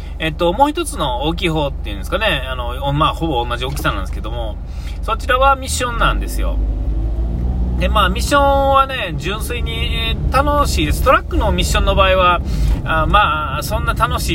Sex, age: male, 40-59